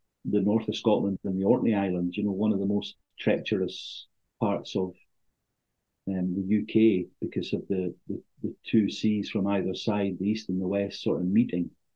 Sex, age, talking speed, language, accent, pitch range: male, 50-69, 190 wpm, English, British, 100-120 Hz